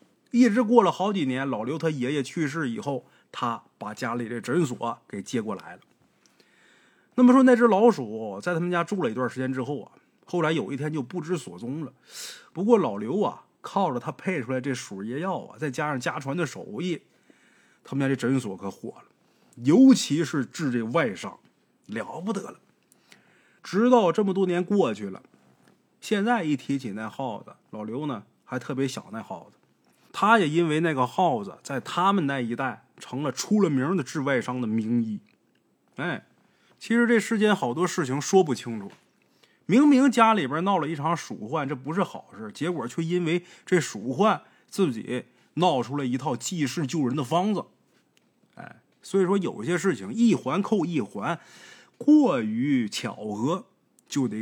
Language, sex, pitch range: Chinese, male, 130-195 Hz